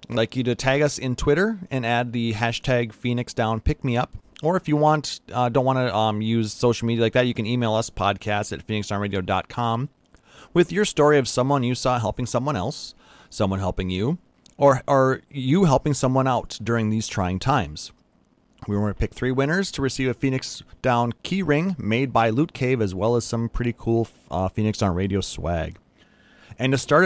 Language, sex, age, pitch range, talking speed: English, male, 30-49, 100-130 Hz, 205 wpm